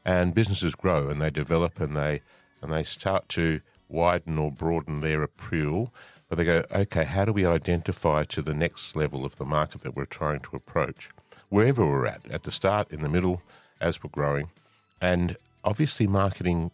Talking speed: 185 wpm